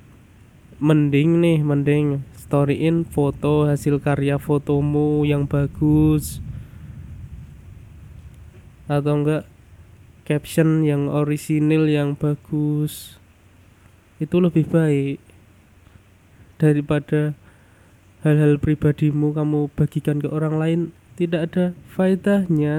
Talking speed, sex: 80 wpm, male